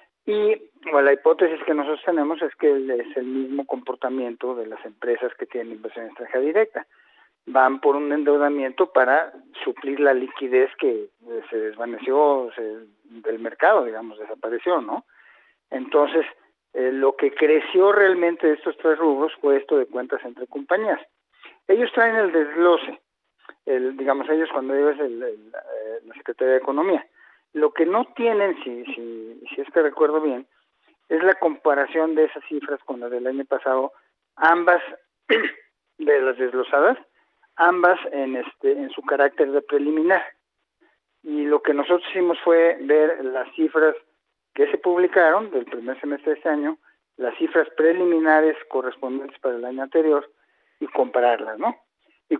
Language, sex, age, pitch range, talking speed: Spanish, male, 50-69, 135-180 Hz, 155 wpm